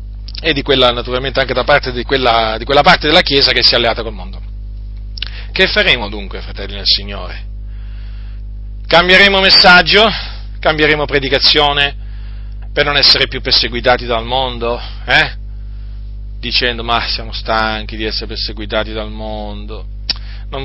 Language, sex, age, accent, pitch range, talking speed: Italian, male, 40-59, native, 100-125 Hz, 135 wpm